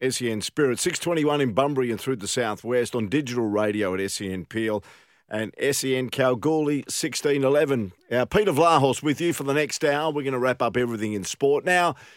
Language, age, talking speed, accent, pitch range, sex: English, 50-69, 185 wpm, Australian, 110-140 Hz, male